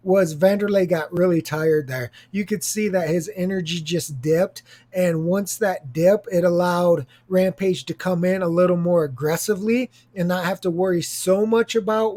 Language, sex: English, male